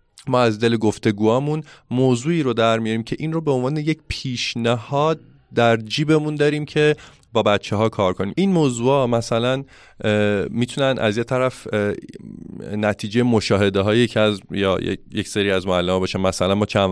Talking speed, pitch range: 155 wpm, 95-115 Hz